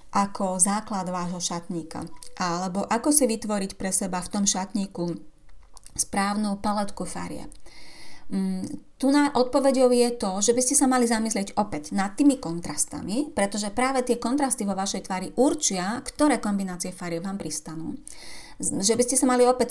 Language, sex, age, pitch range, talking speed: Slovak, female, 30-49, 185-240 Hz, 155 wpm